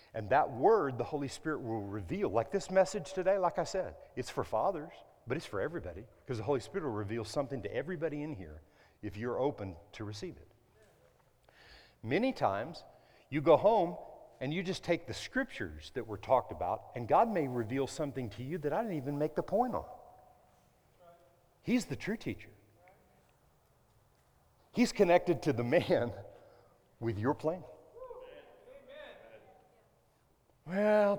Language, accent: English, American